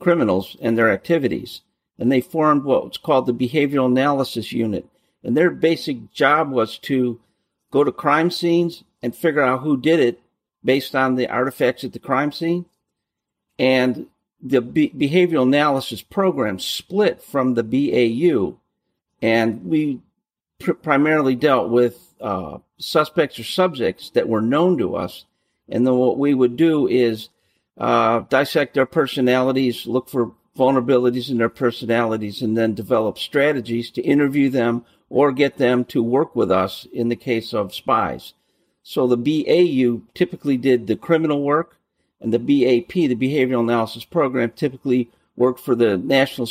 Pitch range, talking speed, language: 120-145 Hz, 150 wpm, English